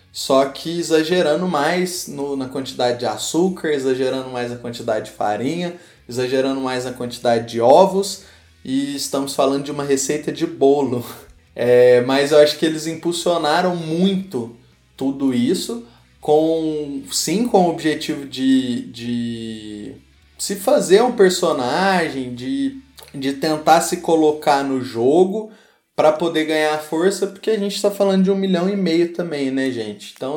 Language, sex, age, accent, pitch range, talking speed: Portuguese, male, 20-39, Brazilian, 130-165 Hz, 140 wpm